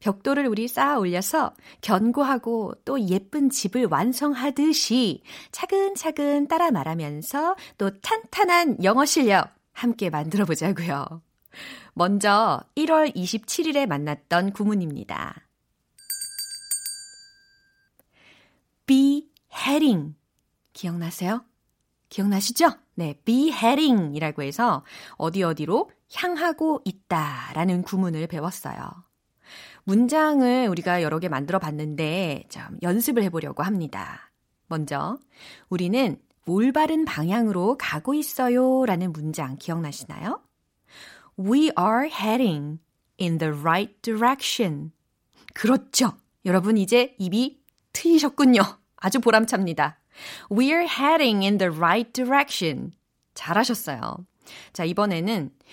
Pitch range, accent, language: 175-280 Hz, native, Korean